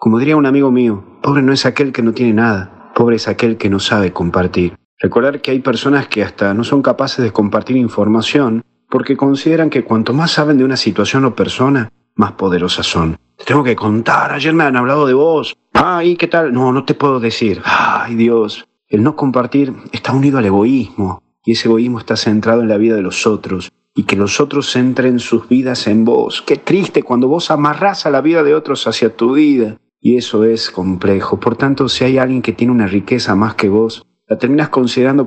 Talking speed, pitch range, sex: 215 wpm, 100-130 Hz, male